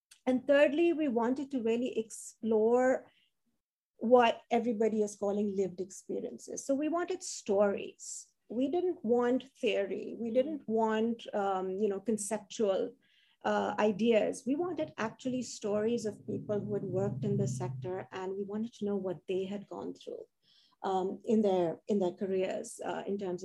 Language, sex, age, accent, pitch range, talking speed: English, female, 50-69, Indian, 200-255 Hz, 155 wpm